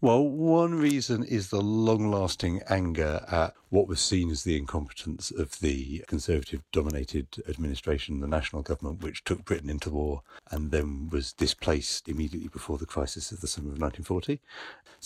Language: English